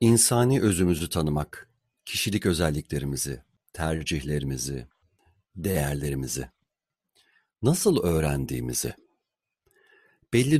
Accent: native